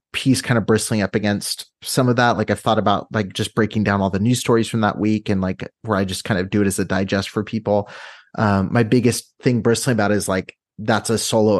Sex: male